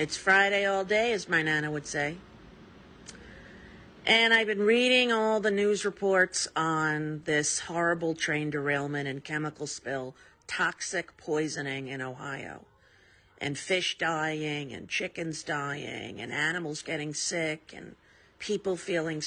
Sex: female